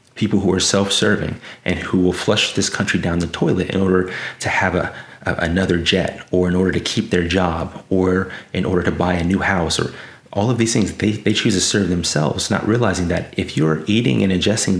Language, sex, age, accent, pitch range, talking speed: English, male, 30-49, American, 85-105 Hz, 225 wpm